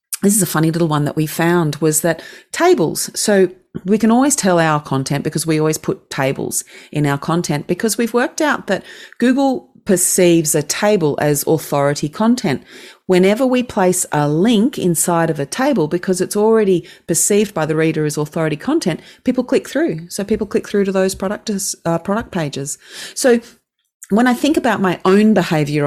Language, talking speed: English, 180 wpm